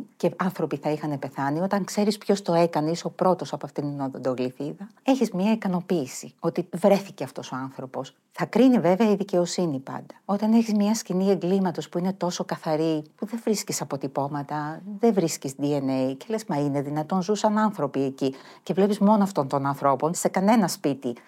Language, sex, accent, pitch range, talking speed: Greek, female, native, 145-195 Hz, 180 wpm